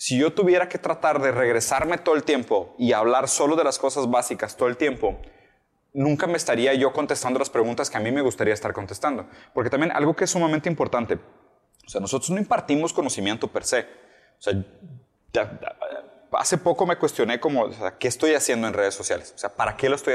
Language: Spanish